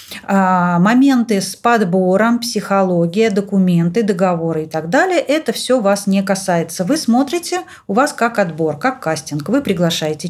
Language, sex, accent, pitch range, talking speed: Russian, female, native, 175-235 Hz, 140 wpm